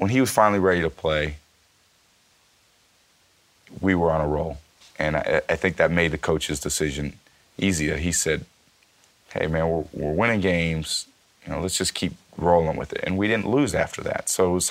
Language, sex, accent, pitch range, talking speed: English, male, American, 75-95 Hz, 190 wpm